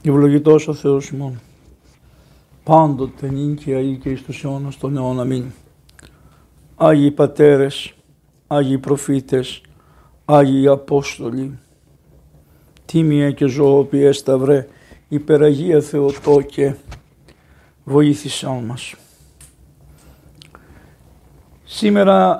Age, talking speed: 60-79, 80 wpm